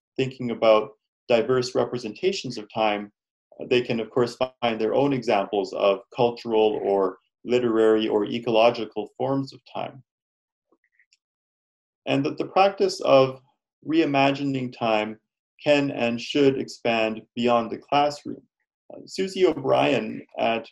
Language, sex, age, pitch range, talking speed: English, male, 30-49, 110-135 Hz, 115 wpm